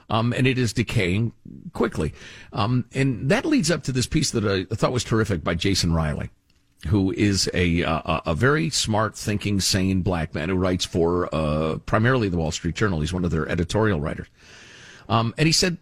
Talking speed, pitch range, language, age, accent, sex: 195 wpm, 95-130 Hz, English, 50-69, American, male